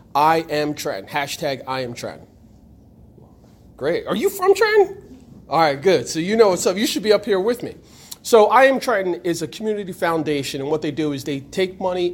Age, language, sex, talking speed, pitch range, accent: 40-59, English, male, 215 wpm, 130-175 Hz, American